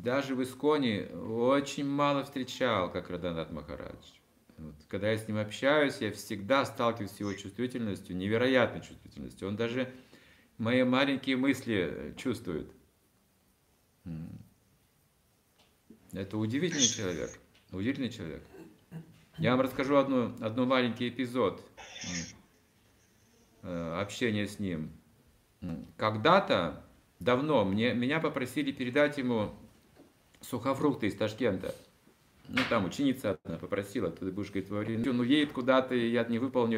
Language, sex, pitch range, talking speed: Russian, male, 105-135 Hz, 115 wpm